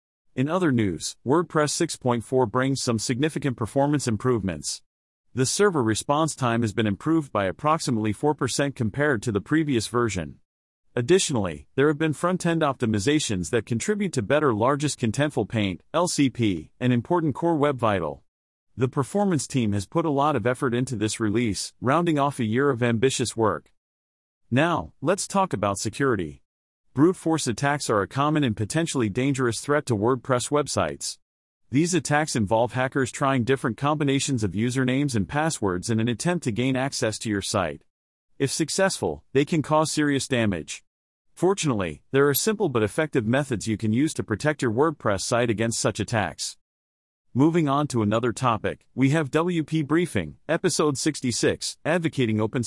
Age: 40-59